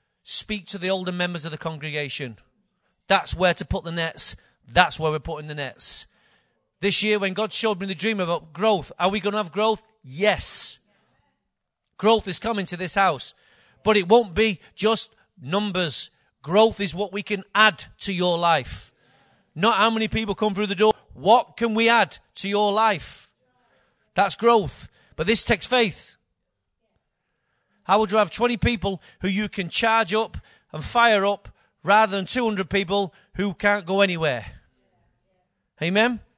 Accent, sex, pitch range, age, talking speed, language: British, male, 170-220 Hz, 40-59, 170 wpm, English